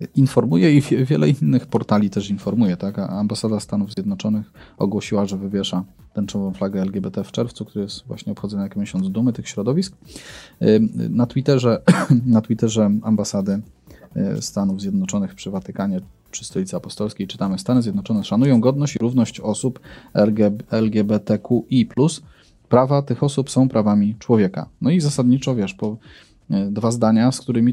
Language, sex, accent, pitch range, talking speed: Polish, male, native, 105-130 Hz, 140 wpm